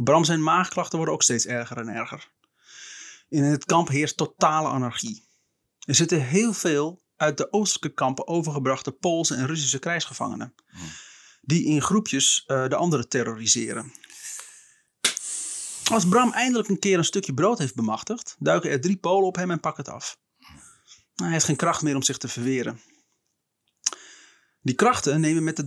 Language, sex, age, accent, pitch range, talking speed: Dutch, male, 30-49, Dutch, 130-170 Hz, 160 wpm